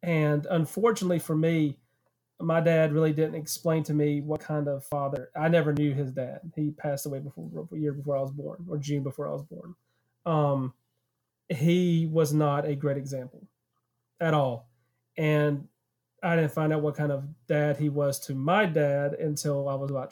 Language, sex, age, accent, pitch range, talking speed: English, male, 30-49, American, 130-155 Hz, 185 wpm